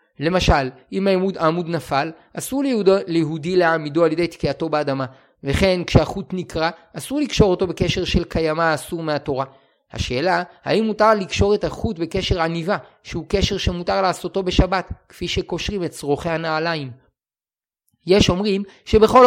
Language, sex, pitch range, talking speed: Hebrew, male, 150-195 Hz, 135 wpm